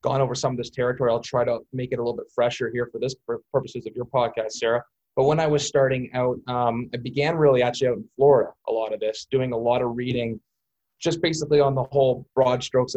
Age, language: 20-39, English